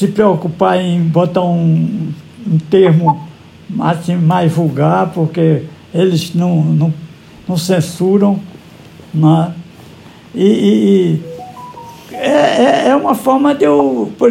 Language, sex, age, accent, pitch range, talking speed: Portuguese, male, 60-79, Brazilian, 175-235 Hz, 95 wpm